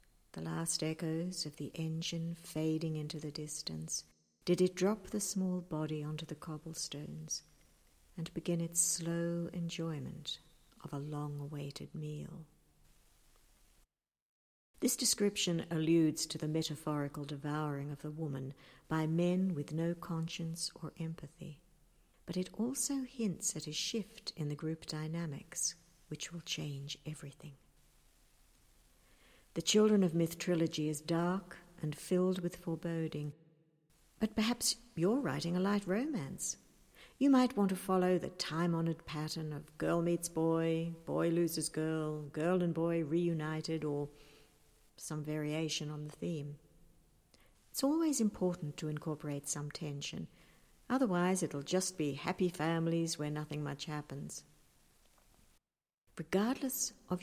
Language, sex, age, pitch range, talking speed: English, female, 60-79, 150-175 Hz, 130 wpm